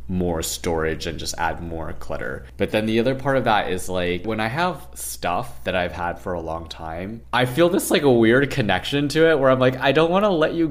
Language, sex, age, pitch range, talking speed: English, male, 20-39, 90-125 Hz, 250 wpm